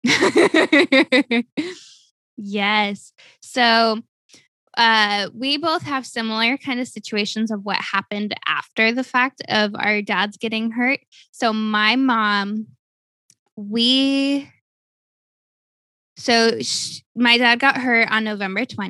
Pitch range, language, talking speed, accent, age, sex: 205-240 Hz, English, 100 wpm, American, 10-29, female